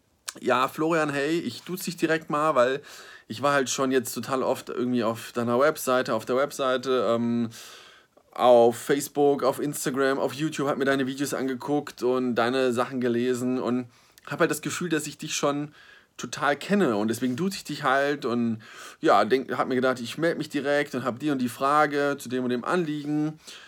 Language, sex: German, male